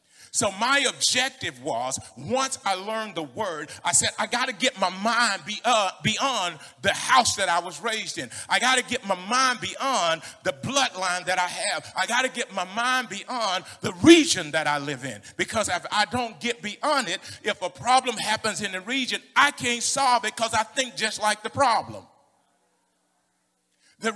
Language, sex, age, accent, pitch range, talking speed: English, male, 40-59, American, 180-245 Hz, 190 wpm